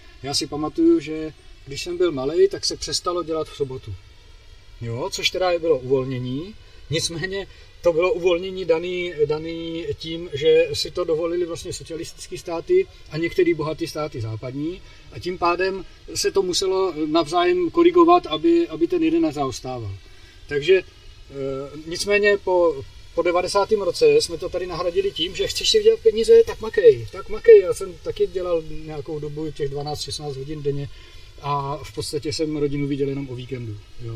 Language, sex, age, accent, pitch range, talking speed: Czech, male, 40-59, native, 140-205 Hz, 160 wpm